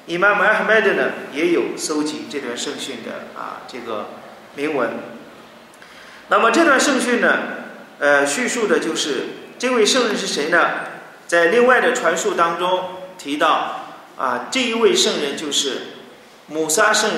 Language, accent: Chinese, native